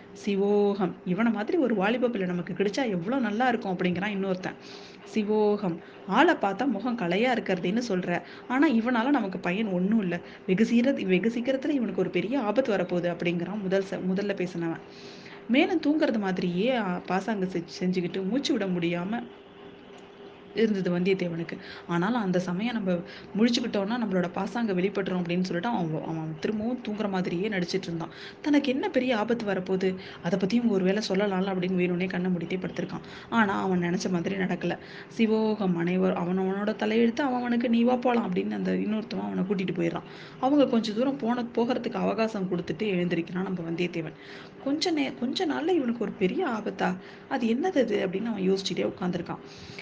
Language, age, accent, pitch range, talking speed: Tamil, 20-39, native, 180-235 Hz, 140 wpm